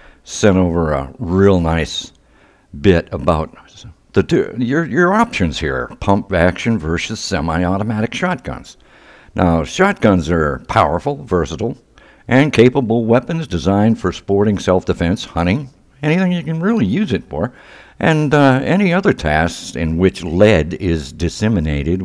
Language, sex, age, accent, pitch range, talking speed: English, male, 60-79, American, 80-115 Hz, 130 wpm